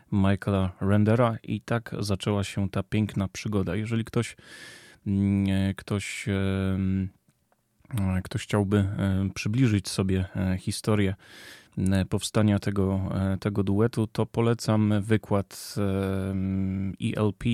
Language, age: Polish, 20-39